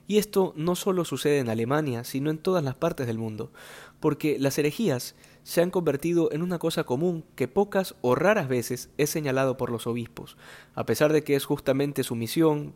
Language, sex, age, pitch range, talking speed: Spanish, male, 20-39, 125-165 Hz, 200 wpm